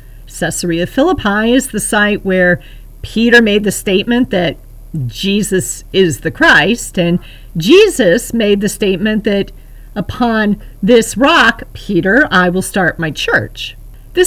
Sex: female